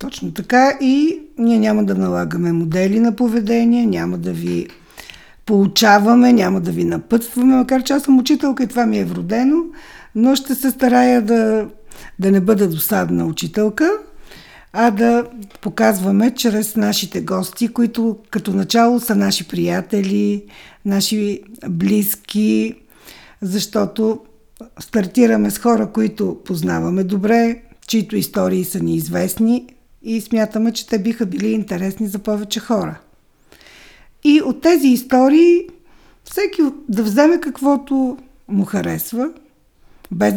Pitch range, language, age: 200-275 Hz, Bulgarian, 50-69